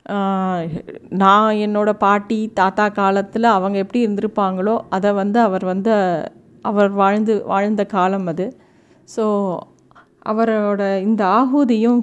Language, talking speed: Tamil, 105 wpm